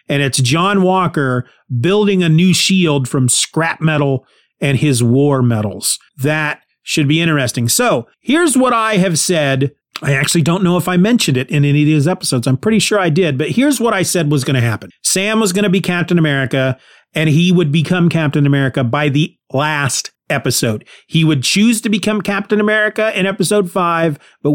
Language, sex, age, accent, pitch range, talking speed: English, male, 40-59, American, 145-185 Hz, 195 wpm